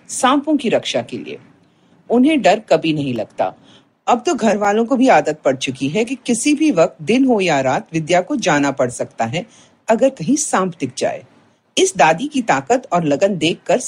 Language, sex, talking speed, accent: Hindi, female, 205 wpm, native